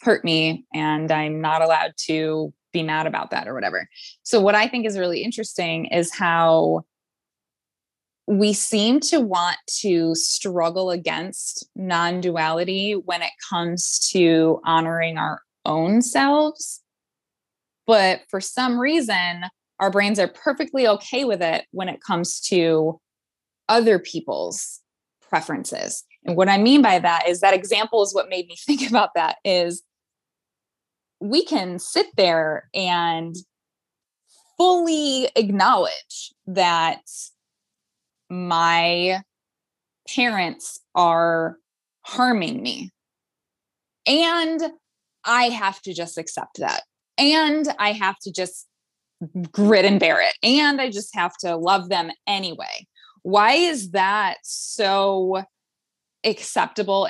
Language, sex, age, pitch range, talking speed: English, female, 20-39, 170-230 Hz, 120 wpm